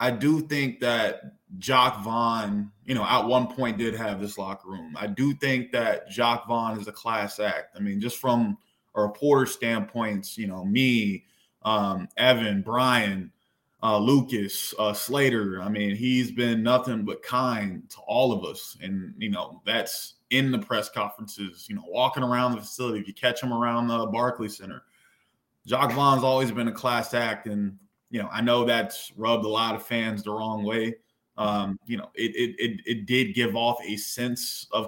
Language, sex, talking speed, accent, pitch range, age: English, male, 190 wpm, American, 105-125 Hz, 20-39